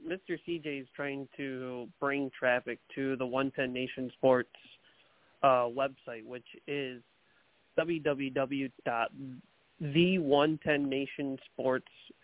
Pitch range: 130-150 Hz